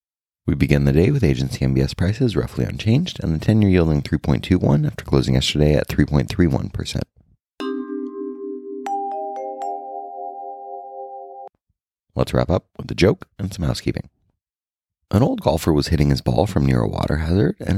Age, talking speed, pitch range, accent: 30-49, 140 wpm, 70-115 Hz, American